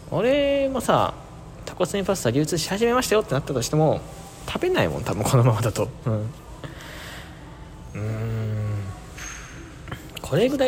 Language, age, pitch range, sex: Japanese, 20-39, 110-180 Hz, male